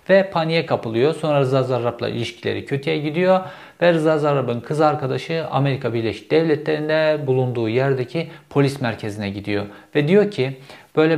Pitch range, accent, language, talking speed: 115-155 Hz, native, Turkish, 140 wpm